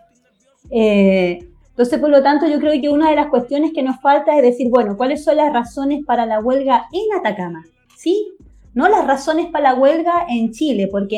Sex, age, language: female, 30-49, Spanish